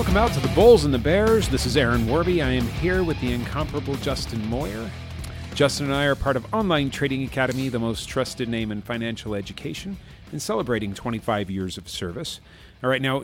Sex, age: male, 40-59